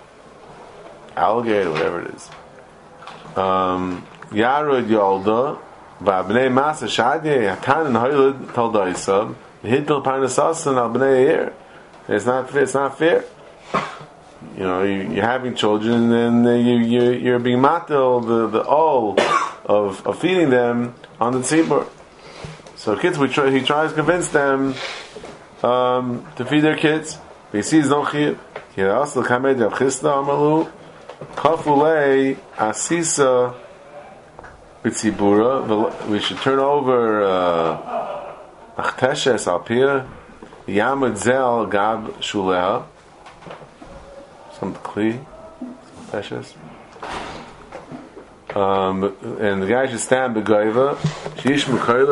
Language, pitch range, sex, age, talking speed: English, 110-145 Hz, male, 30-49, 115 wpm